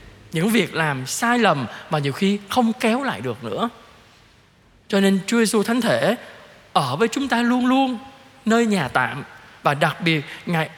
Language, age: Vietnamese, 20-39